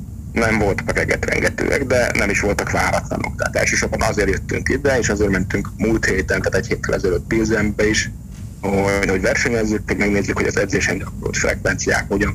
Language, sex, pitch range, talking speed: Hungarian, male, 95-110 Hz, 165 wpm